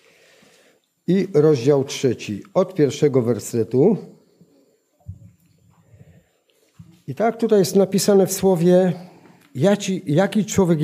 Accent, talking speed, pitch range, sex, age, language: native, 85 wpm, 145-185 Hz, male, 50-69, Polish